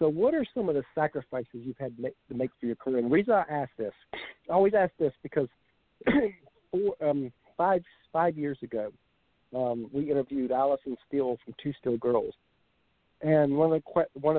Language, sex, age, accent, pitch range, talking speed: English, male, 50-69, American, 130-160 Hz, 175 wpm